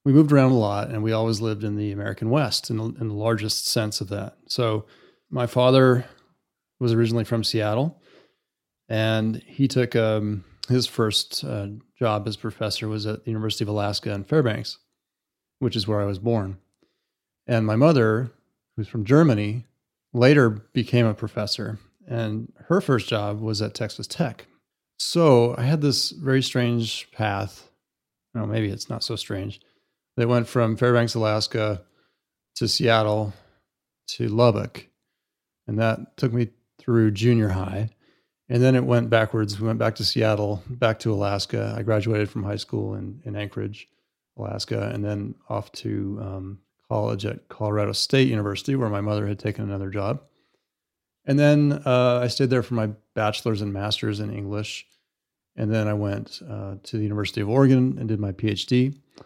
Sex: male